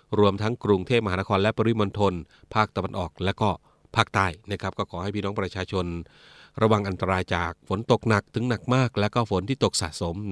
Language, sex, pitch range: Thai, male, 95-115 Hz